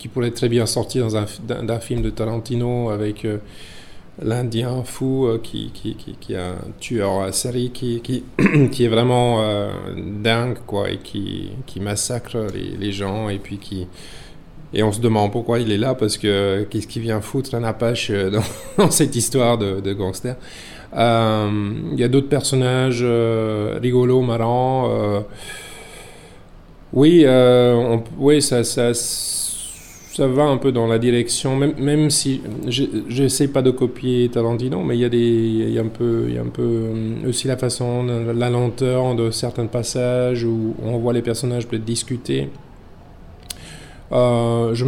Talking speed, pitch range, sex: 170 wpm, 110-125 Hz, male